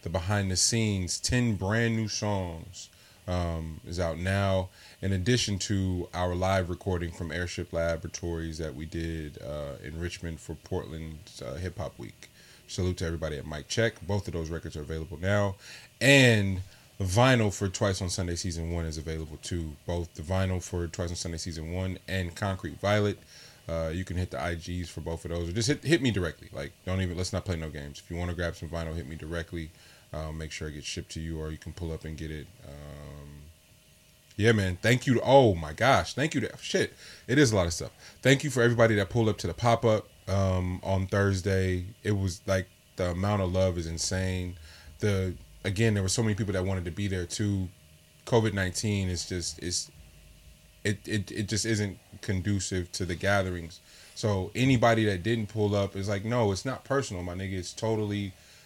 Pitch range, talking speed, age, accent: 85-105 Hz, 210 wpm, 20-39, American